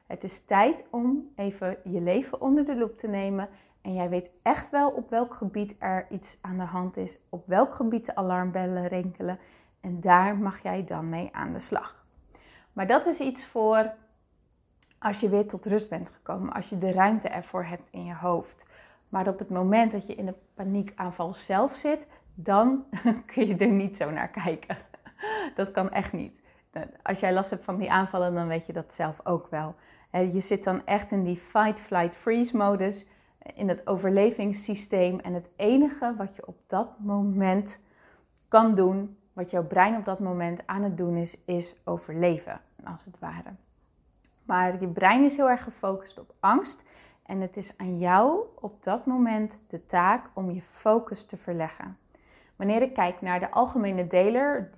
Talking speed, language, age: 180 wpm, Dutch, 20-39